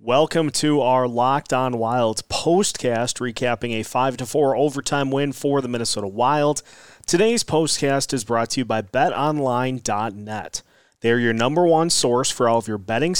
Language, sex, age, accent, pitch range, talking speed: English, male, 30-49, American, 115-155 Hz, 155 wpm